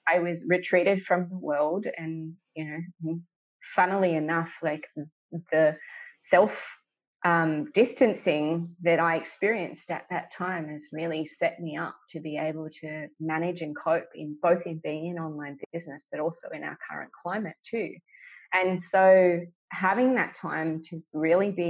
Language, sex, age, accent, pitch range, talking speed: English, female, 20-39, Australian, 155-180 Hz, 150 wpm